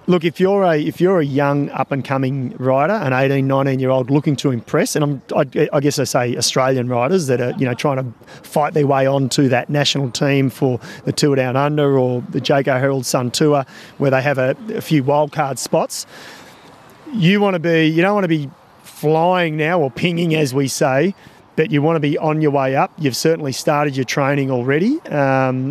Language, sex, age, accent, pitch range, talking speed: English, male, 30-49, Australian, 130-160 Hz, 205 wpm